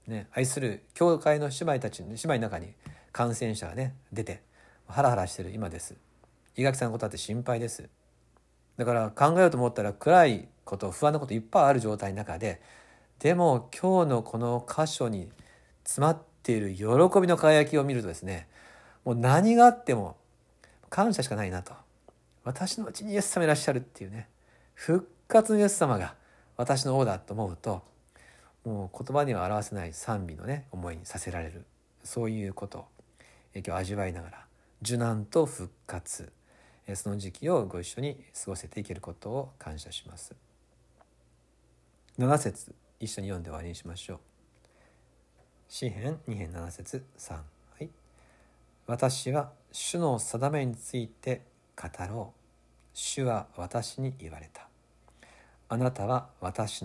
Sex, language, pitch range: male, Japanese, 90-135 Hz